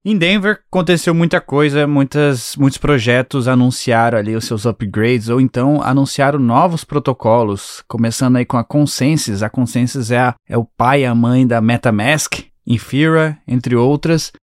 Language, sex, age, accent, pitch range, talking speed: Portuguese, male, 20-39, Brazilian, 120-145 Hz, 160 wpm